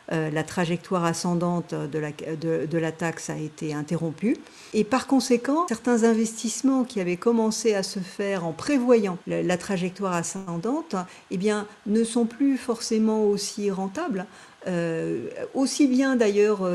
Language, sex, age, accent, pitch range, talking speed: French, female, 50-69, French, 170-220 Hz, 145 wpm